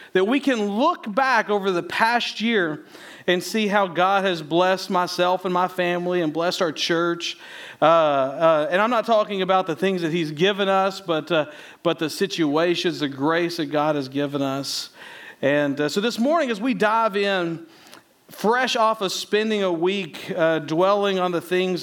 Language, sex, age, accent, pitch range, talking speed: English, male, 50-69, American, 175-230 Hz, 185 wpm